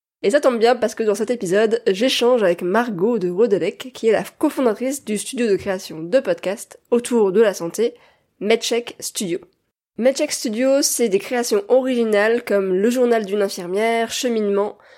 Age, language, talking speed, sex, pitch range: 20-39, French, 170 wpm, female, 200-250 Hz